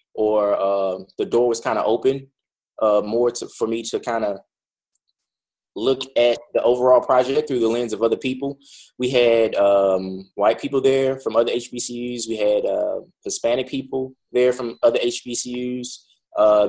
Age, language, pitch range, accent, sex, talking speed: 20-39, English, 110-135 Hz, American, male, 160 wpm